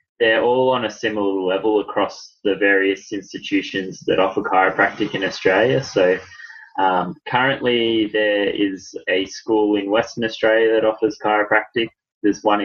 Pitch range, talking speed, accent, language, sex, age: 95-110 Hz, 140 wpm, Australian, English, male, 10-29